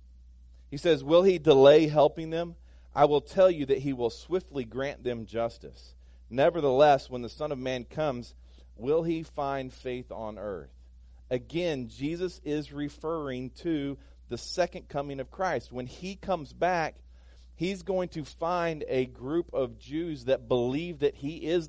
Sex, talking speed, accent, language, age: male, 160 wpm, American, English, 40-59